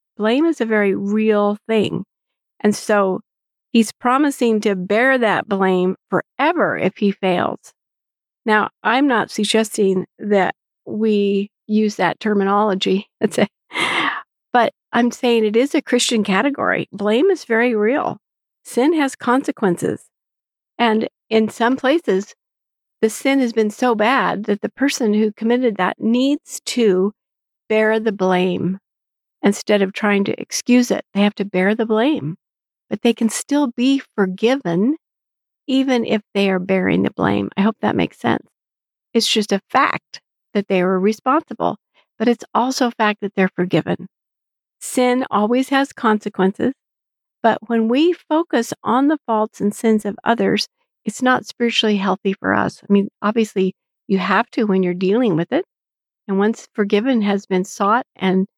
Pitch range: 200-245 Hz